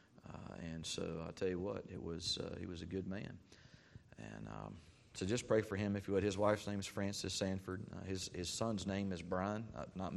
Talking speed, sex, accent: 225 wpm, male, American